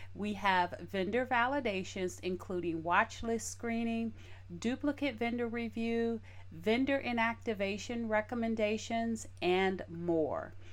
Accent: American